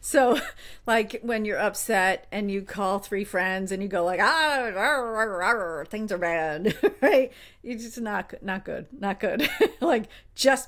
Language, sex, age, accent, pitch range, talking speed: English, female, 50-69, American, 185-255 Hz, 175 wpm